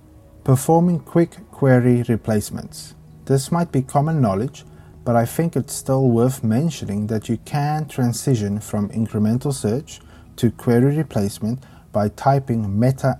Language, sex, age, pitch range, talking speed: English, male, 30-49, 105-135 Hz, 130 wpm